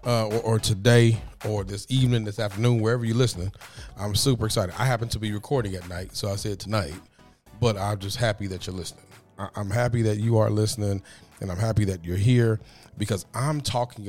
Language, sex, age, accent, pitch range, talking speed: English, male, 40-59, American, 100-120 Hz, 210 wpm